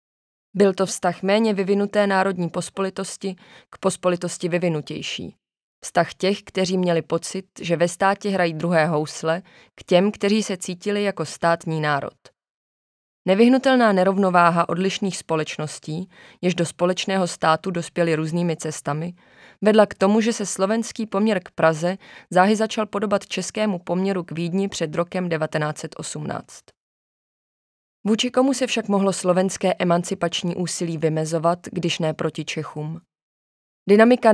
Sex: female